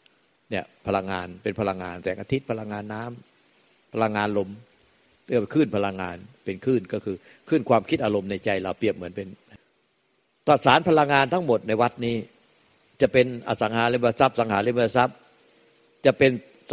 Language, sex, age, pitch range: Thai, male, 60-79, 105-135 Hz